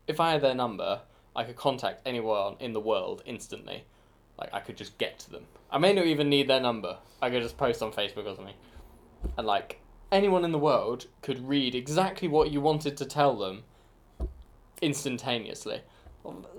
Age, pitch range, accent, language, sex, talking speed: 10-29, 95-130 Hz, British, English, male, 190 wpm